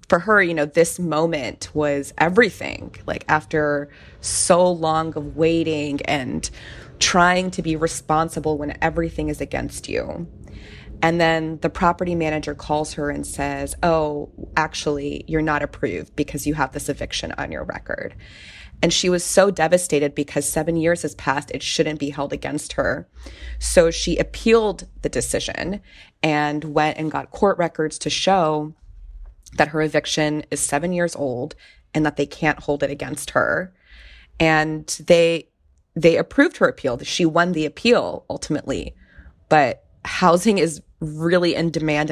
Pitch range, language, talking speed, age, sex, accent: 145-165 Hz, English, 150 wpm, 20-39, female, American